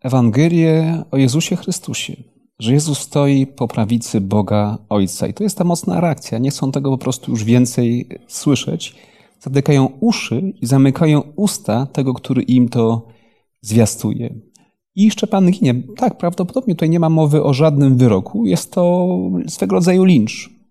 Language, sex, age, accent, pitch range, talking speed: Polish, male, 30-49, native, 120-160 Hz, 155 wpm